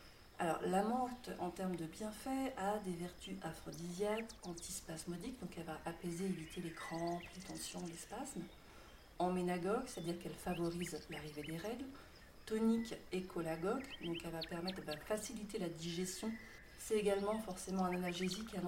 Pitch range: 170-205 Hz